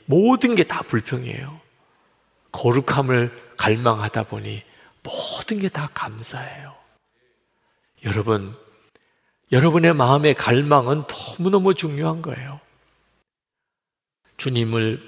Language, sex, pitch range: Korean, male, 110-145 Hz